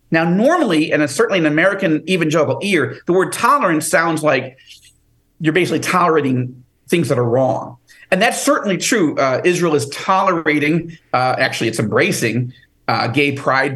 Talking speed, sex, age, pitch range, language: 155 wpm, male, 50-69, 125-180 Hz, English